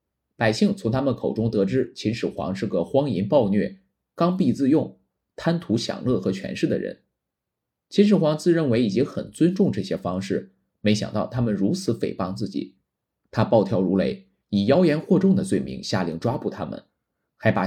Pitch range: 100-160 Hz